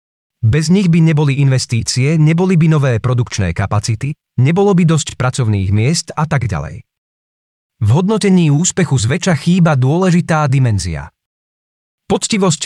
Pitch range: 115-165 Hz